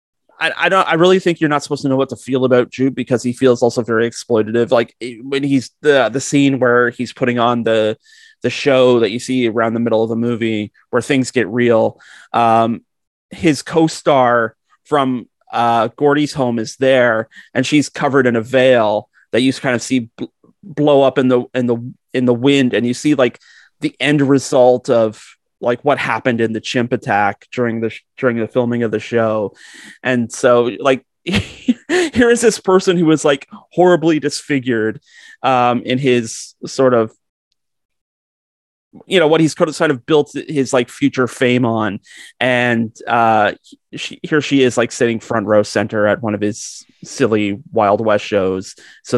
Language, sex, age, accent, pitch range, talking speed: English, male, 30-49, American, 115-145 Hz, 180 wpm